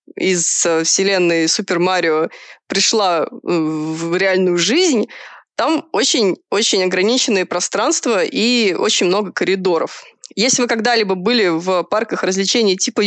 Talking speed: 110 wpm